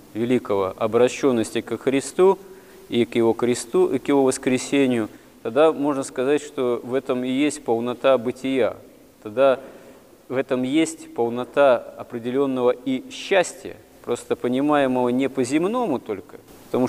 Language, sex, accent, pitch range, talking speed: Russian, male, native, 110-135 Hz, 130 wpm